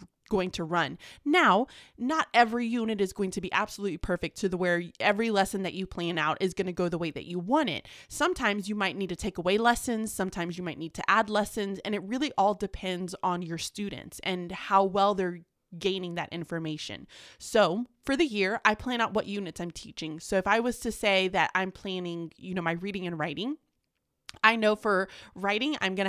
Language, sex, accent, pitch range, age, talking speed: English, female, American, 180-235 Hz, 20-39, 215 wpm